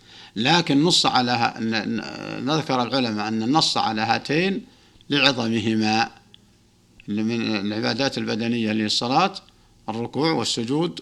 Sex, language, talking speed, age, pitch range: male, Arabic, 85 wpm, 60-79, 115-140 Hz